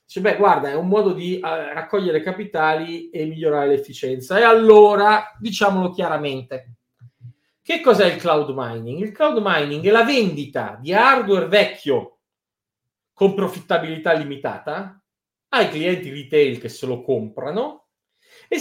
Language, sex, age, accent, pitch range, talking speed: Italian, male, 40-59, native, 145-210 Hz, 130 wpm